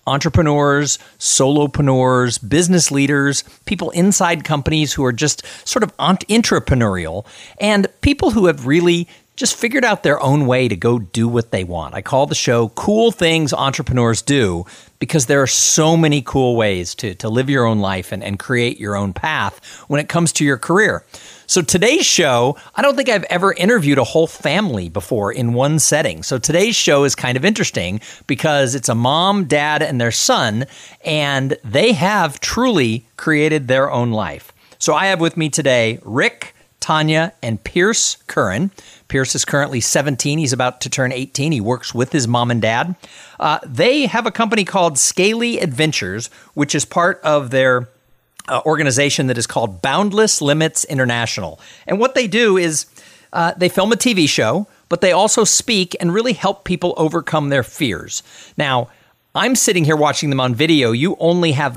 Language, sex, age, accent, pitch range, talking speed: English, male, 50-69, American, 125-175 Hz, 175 wpm